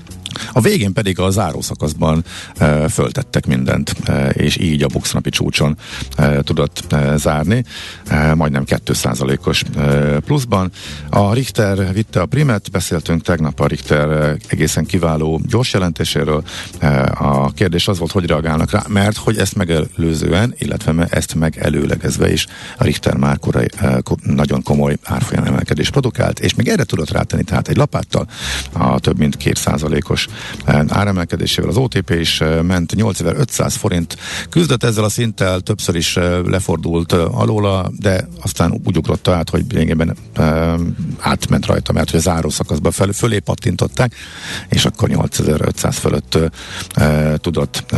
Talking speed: 135 wpm